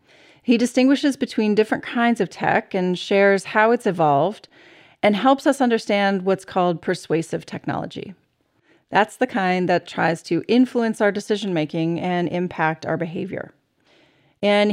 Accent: American